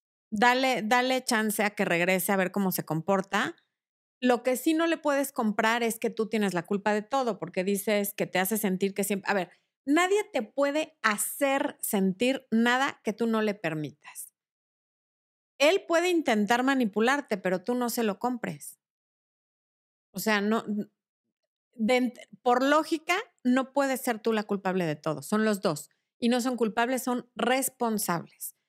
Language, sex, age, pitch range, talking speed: Spanish, female, 40-59, 195-265 Hz, 165 wpm